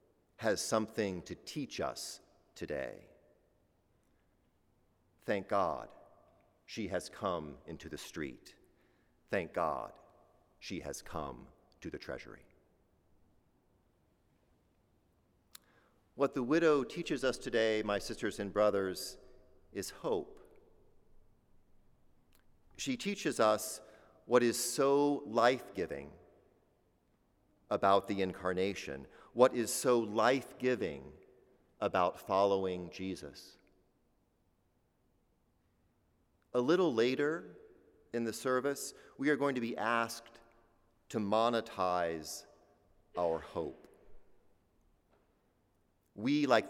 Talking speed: 90 wpm